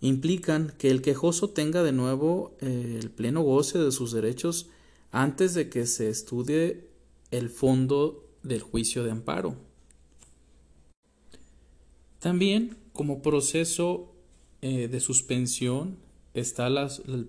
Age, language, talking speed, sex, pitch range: 40-59, Spanish, 110 wpm, male, 120-160 Hz